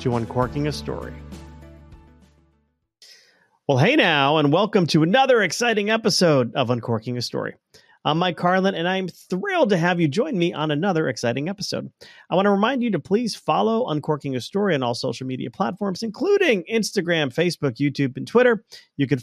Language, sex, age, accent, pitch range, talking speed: English, male, 30-49, American, 130-190 Hz, 175 wpm